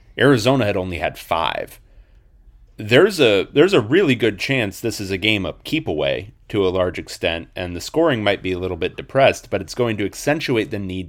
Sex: male